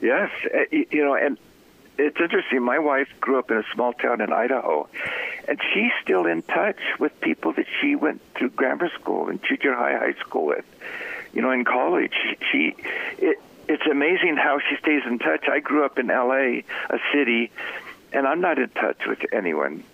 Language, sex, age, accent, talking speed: English, male, 60-79, American, 190 wpm